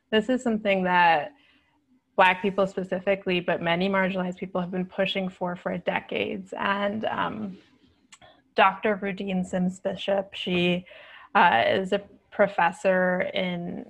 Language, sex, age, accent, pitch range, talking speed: English, female, 20-39, American, 180-200 Hz, 125 wpm